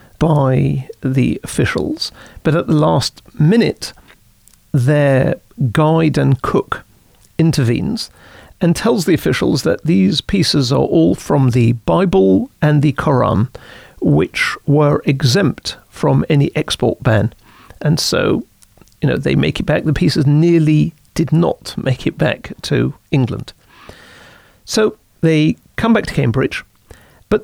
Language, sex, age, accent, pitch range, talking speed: English, male, 50-69, British, 130-170 Hz, 130 wpm